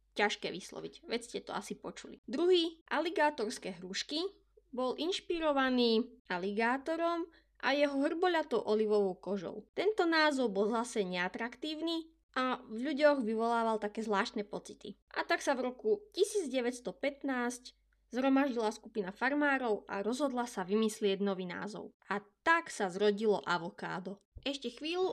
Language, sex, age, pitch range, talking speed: Slovak, female, 20-39, 210-290 Hz, 125 wpm